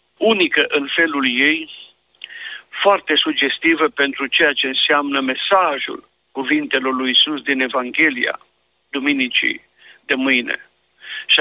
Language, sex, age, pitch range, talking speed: Romanian, male, 50-69, 120-160 Hz, 105 wpm